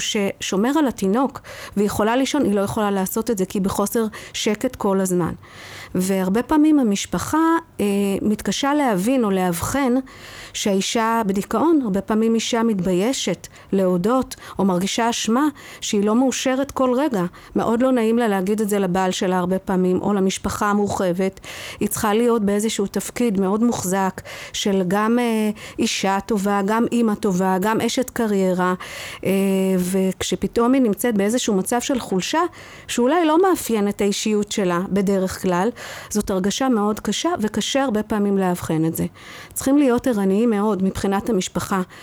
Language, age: Hebrew, 50-69